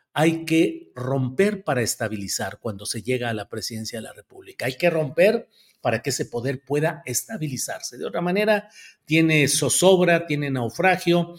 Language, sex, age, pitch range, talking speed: Spanish, male, 50-69, 130-170 Hz, 160 wpm